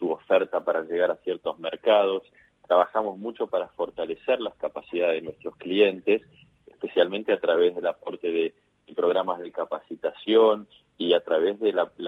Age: 30-49